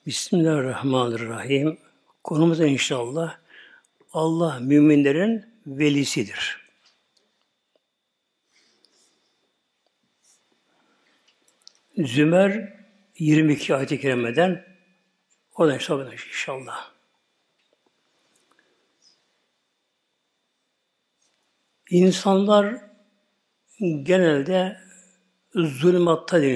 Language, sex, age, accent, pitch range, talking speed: Turkish, male, 60-79, native, 150-205 Hz, 35 wpm